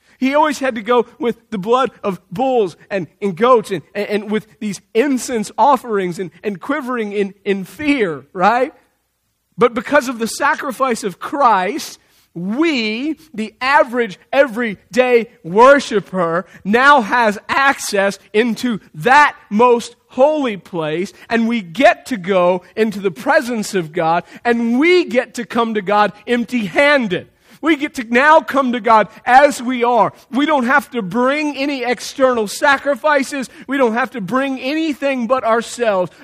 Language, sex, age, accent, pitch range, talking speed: English, male, 40-59, American, 195-260 Hz, 150 wpm